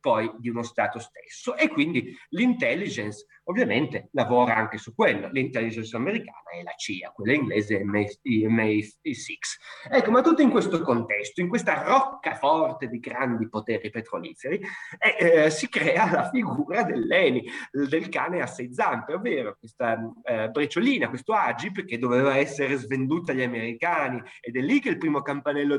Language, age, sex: Italian, 30-49, male